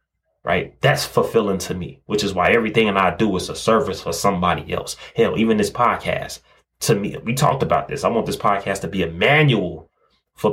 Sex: male